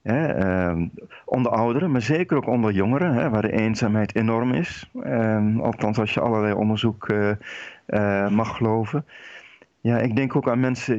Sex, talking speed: male, 170 wpm